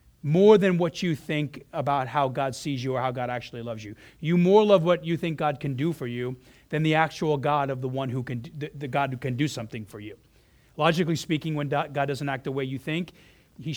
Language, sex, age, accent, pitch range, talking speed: English, male, 40-59, American, 130-160 Hz, 245 wpm